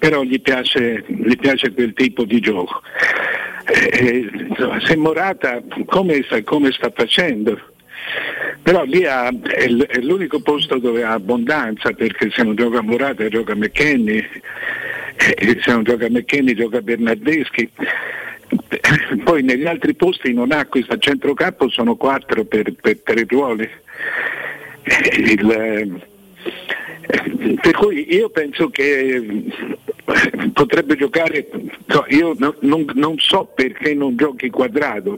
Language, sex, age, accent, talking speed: Italian, male, 60-79, native, 125 wpm